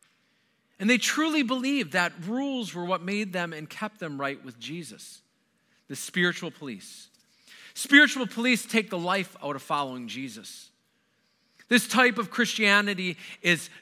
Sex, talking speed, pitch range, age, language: male, 145 wpm, 165-225 Hz, 40-59, English